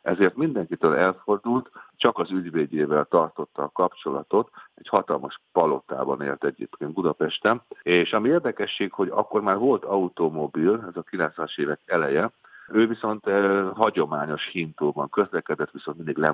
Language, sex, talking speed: Hungarian, male, 135 wpm